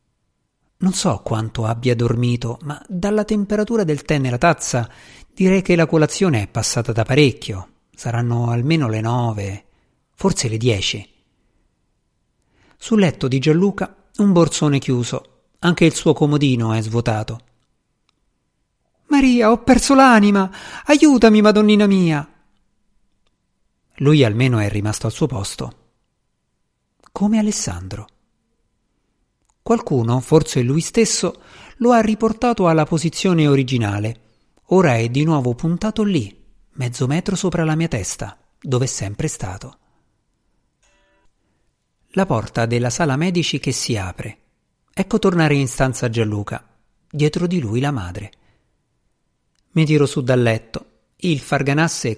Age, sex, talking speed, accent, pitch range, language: 50-69, male, 125 wpm, native, 115-180 Hz, Italian